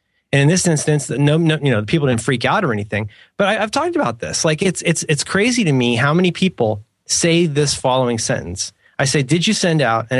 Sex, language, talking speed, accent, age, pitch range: male, English, 240 wpm, American, 30-49, 115-175 Hz